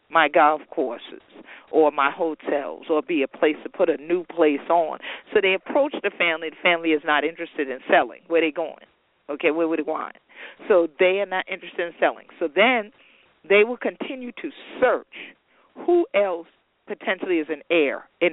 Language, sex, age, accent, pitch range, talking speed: English, female, 40-59, American, 170-255 Hz, 195 wpm